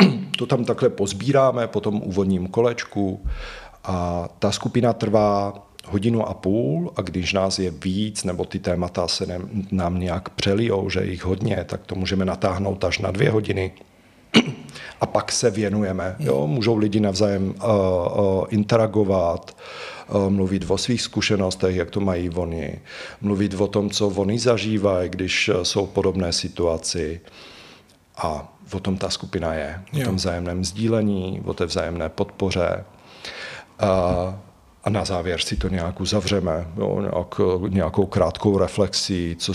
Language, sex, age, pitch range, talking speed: Czech, male, 50-69, 90-110 Hz, 135 wpm